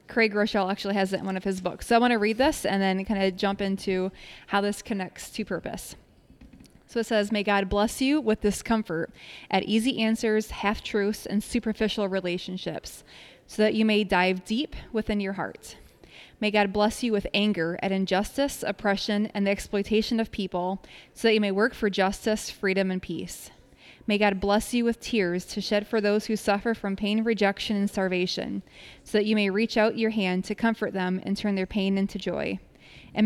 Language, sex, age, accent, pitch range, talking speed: English, female, 20-39, American, 195-220 Hz, 200 wpm